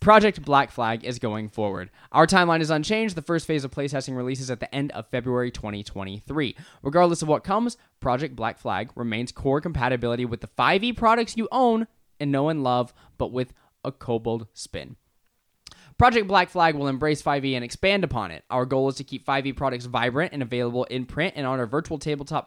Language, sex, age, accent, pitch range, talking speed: English, male, 10-29, American, 125-160 Hz, 200 wpm